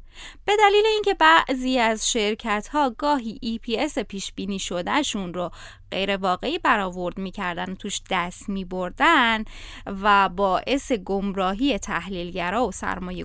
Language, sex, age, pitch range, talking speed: Persian, female, 20-39, 200-305 Hz, 125 wpm